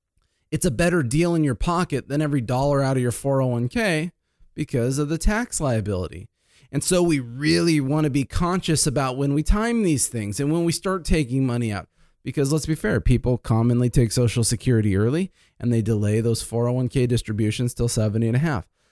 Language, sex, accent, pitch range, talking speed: English, male, American, 110-155 Hz, 195 wpm